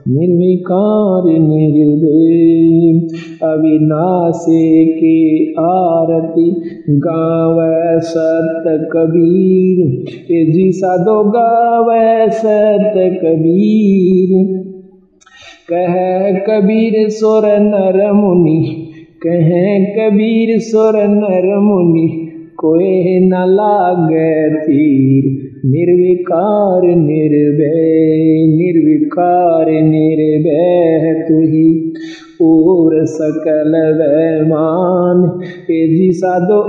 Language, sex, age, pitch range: Hindi, male, 50-69, 160-200 Hz